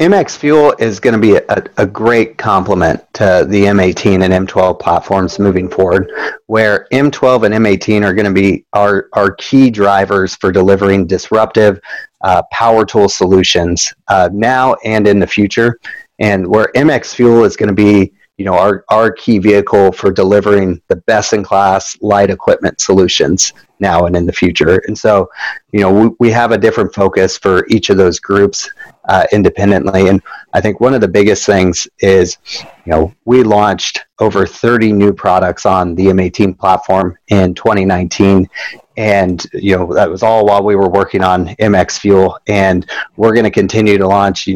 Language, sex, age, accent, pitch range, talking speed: English, male, 30-49, American, 95-110 Hz, 180 wpm